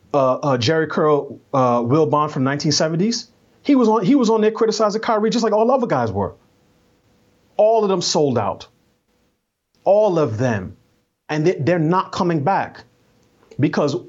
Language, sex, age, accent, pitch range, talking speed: English, male, 30-49, American, 130-185 Hz, 165 wpm